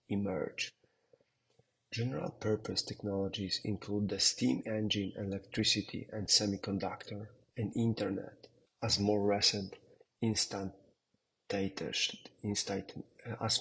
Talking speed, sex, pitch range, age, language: 80 wpm, male, 100-115 Hz, 40-59, English